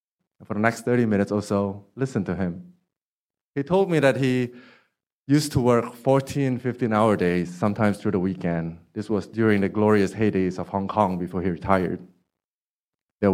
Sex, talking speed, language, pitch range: male, 170 wpm, English, 90-120 Hz